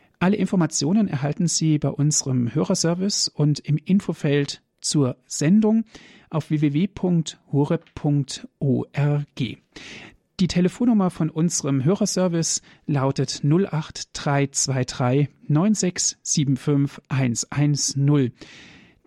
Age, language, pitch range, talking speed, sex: 40-59, German, 135-170 Hz, 65 wpm, male